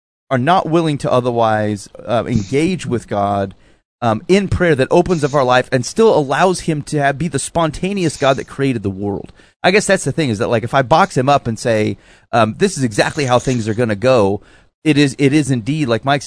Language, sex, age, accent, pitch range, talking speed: English, male, 30-49, American, 115-150 Hz, 230 wpm